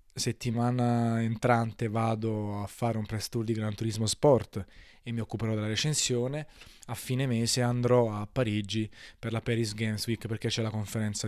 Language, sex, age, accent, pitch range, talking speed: Italian, male, 20-39, native, 105-125 Hz, 170 wpm